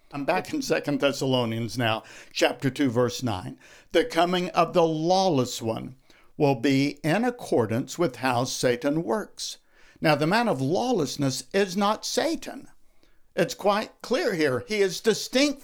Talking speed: 150 wpm